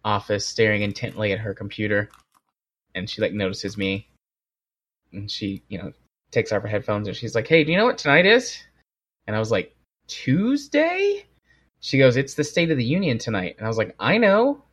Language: English